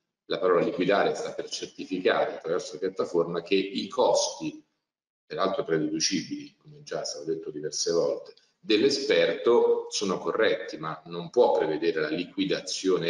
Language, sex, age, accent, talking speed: Italian, male, 40-59, native, 140 wpm